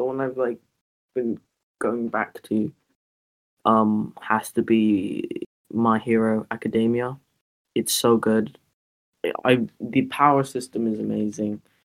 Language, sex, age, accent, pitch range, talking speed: English, male, 10-29, British, 110-125 Hz, 120 wpm